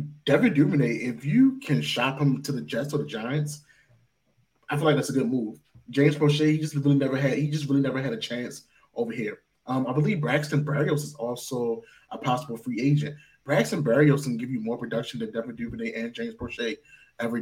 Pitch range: 120-145 Hz